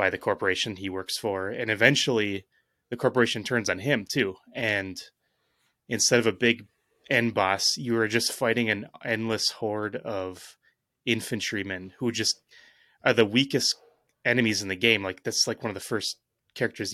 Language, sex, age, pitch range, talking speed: English, male, 30-49, 100-120 Hz, 165 wpm